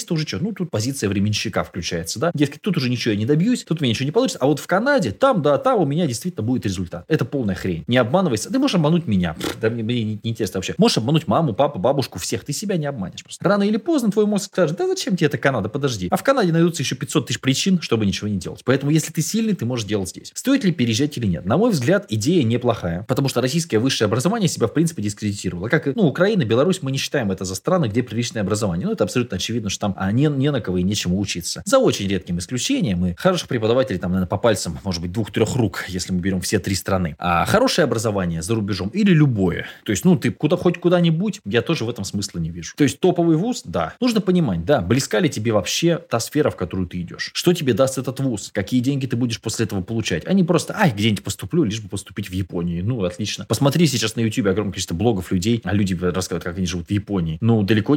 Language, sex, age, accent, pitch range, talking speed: Russian, male, 20-39, native, 100-165 Hz, 255 wpm